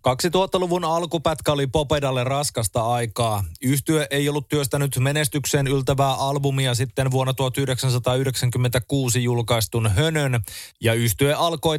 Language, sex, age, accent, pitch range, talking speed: Finnish, male, 30-49, native, 120-145 Hz, 105 wpm